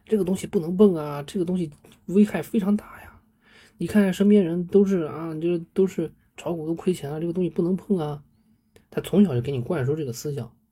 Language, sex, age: Chinese, male, 20-39